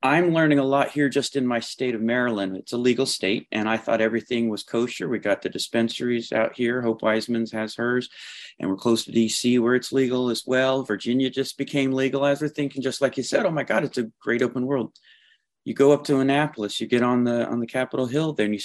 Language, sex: English, male